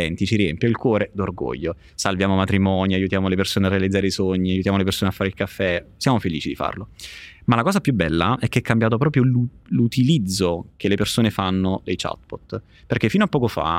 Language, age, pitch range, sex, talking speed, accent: Italian, 20-39, 95-115 Hz, male, 205 wpm, native